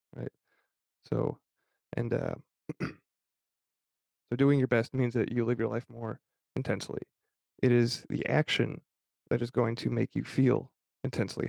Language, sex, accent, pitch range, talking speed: English, male, American, 115-135 Hz, 145 wpm